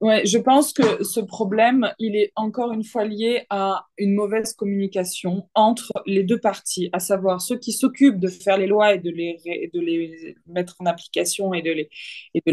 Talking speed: 205 wpm